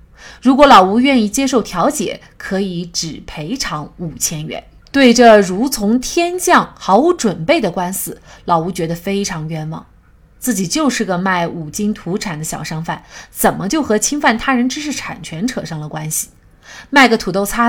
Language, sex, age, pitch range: Chinese, female, 30-49, 170-245 Hz